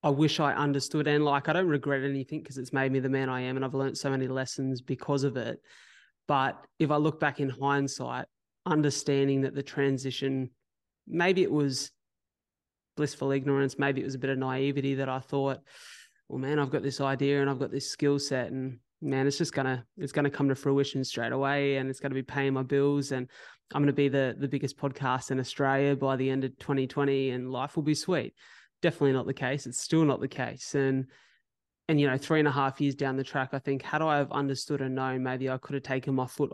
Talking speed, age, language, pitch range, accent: 240 wpm, 20-39, English, 130-140 Hz, Australian